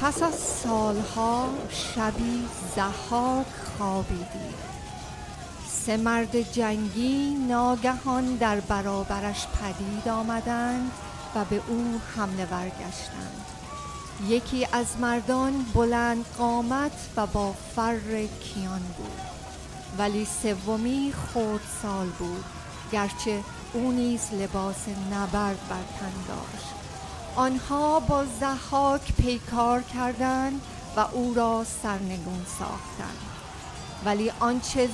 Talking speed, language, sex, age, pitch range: 90 wpm, Persian, female, 40-59, 210-255 Hz